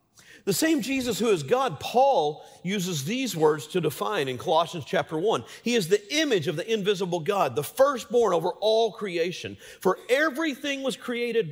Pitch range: 175-280 Hz